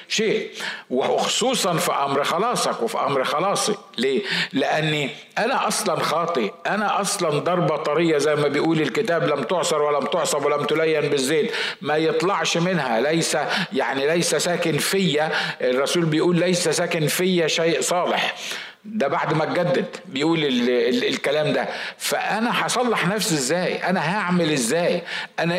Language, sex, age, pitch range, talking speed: Arabic, male, 50-69, 155-200 Hz, 135 wpm